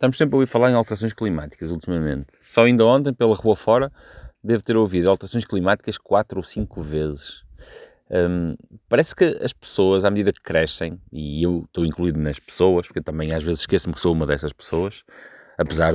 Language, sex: Portuguese, male